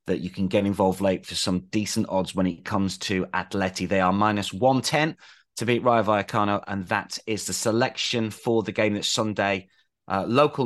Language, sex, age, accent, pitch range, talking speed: English, male, 30-49, British, 95-115 Hz, 195 wpm